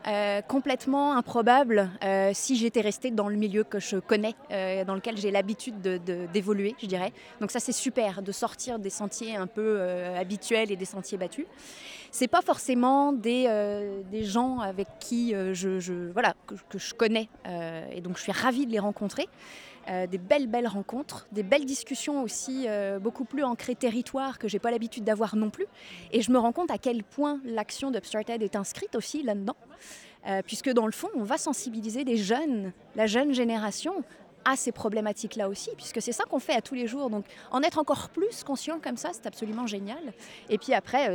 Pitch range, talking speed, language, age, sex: 205-265 Hz, 205 wpm, French, 20-39, female